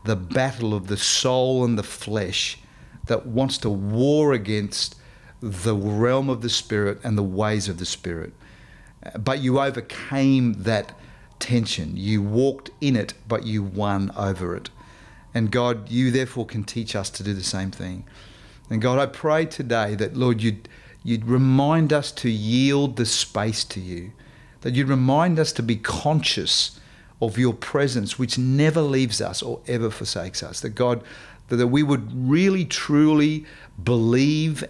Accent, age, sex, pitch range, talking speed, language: Australian, 40-59, male, 105-130 Hz, 160 wpm, English